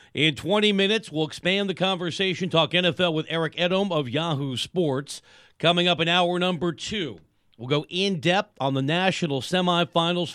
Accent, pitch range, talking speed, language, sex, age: American, 150-200 Hz, 160 wpm, English, male, 40-59